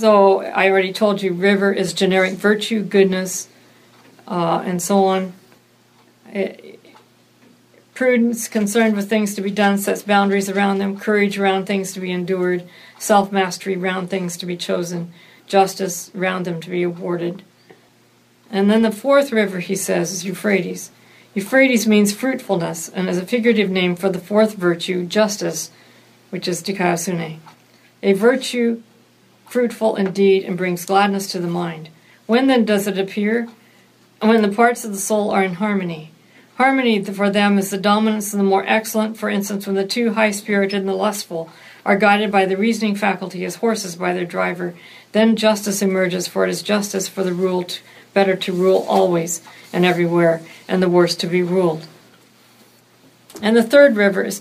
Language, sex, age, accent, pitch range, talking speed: English, female, 50-69, American, 185-215 Hz, 165 wpm